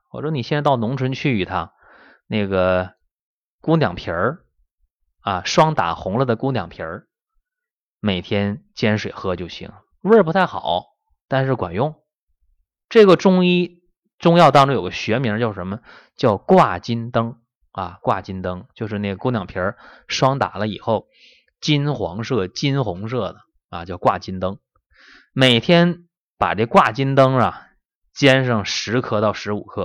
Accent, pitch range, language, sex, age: native, 95-140 Hz, Chinese, male, 20-39